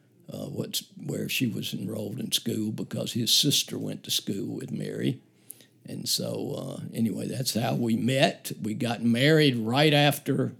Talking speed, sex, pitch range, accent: 160 wpm, male, 115-145 Hz, American